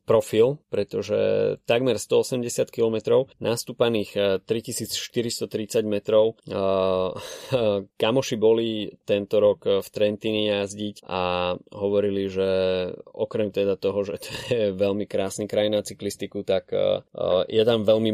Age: 20-39